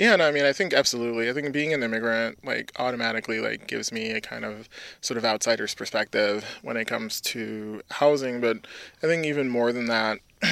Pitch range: 115-135 Hz